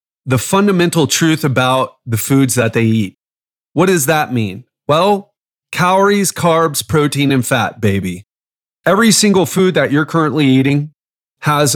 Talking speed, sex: 145 wpm, male